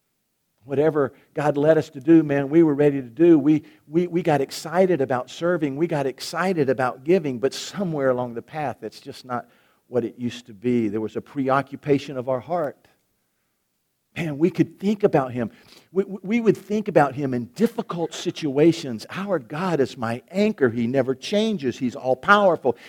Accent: American